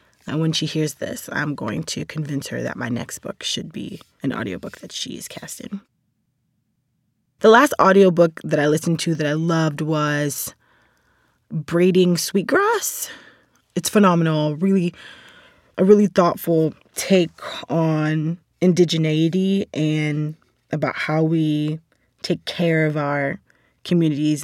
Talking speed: 130 wpm